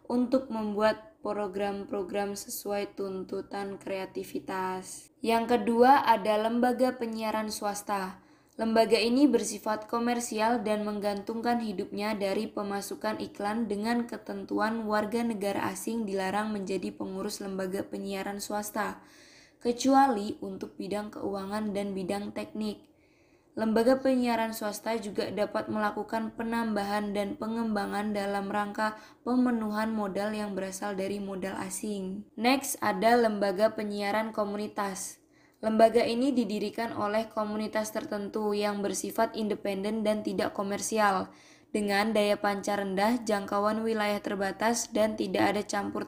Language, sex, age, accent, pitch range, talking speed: Indonesian, female, 20-39, native, 200-230 Hz, 110 wpm